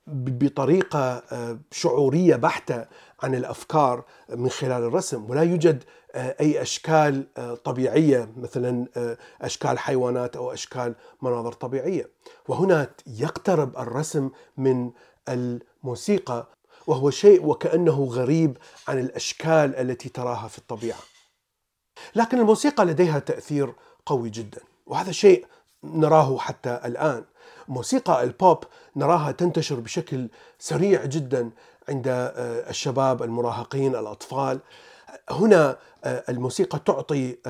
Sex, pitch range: male, 125-165 Hz